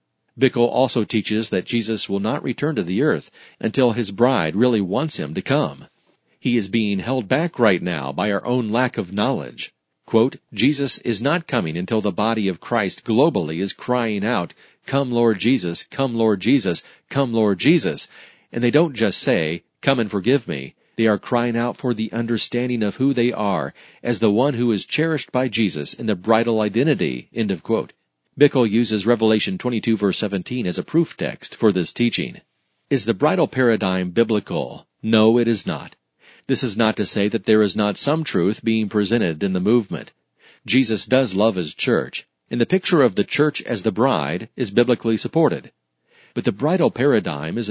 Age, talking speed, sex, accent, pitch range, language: 40-59, 190 wpm, male, American, 105-125 Hz, English